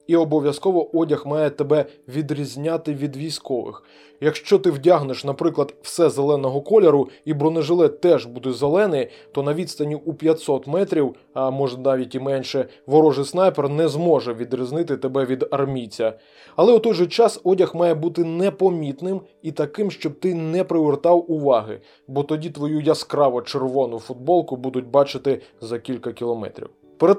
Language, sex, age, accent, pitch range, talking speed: Ukrainian, male, 20-39, native, 140-175 Hz, 145 wpm